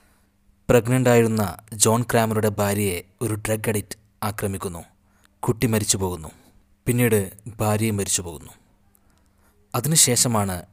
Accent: native